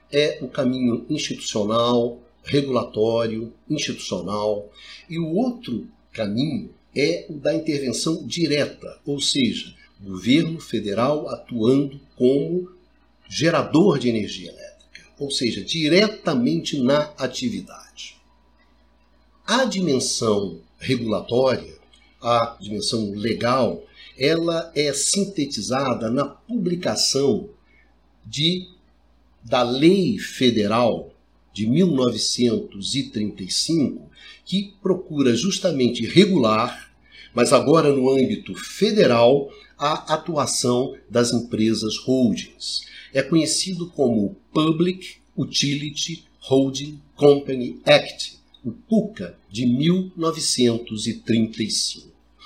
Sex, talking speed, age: male, 85 wpm, 60-79